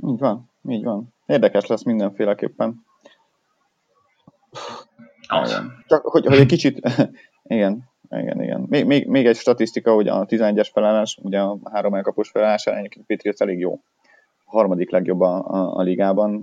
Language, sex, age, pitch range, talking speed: Hungarian, male, 30-49, 90-105 Hz, 145 wpm